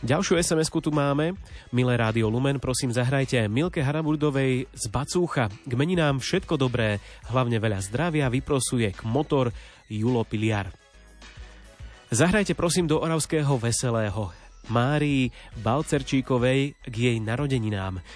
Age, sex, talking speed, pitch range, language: 30-49, male, 110 wpm, 115-150 Hz, Slovak